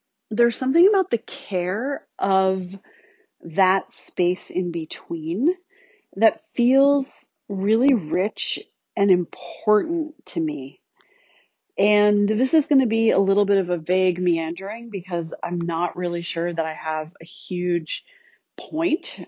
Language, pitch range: English, 170-235 Hz